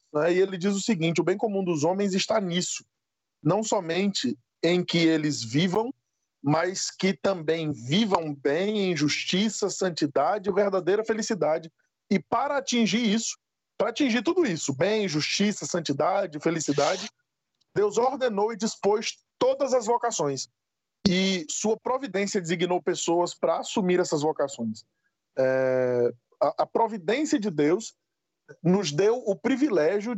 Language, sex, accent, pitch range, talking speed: Portuguese, male, Brazilian, 155-225 Hz, 130 wpm